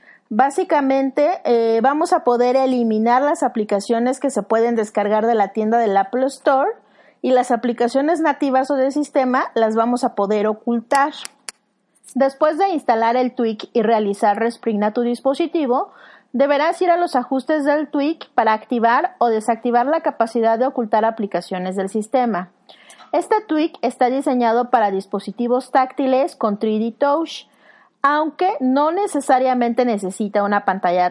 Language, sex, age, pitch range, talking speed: Spanish, female, 30-49, 225-285 Hz, 145 wpm